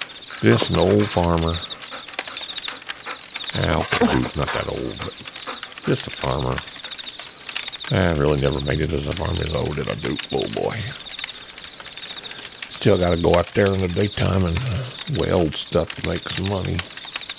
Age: 50-69